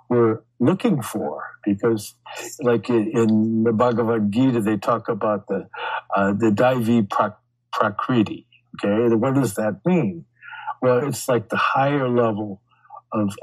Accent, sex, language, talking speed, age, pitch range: American, male, English, 130 wpm, 60-79, 100-120 Hz